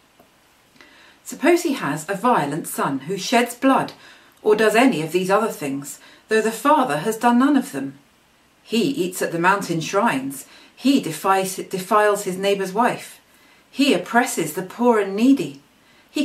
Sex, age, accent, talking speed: female, 40-59, British, 155 wpm